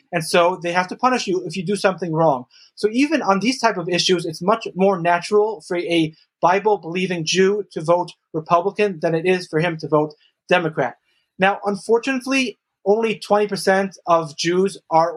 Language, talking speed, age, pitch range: English, 180 wpm, 30-49, 160-185 Hz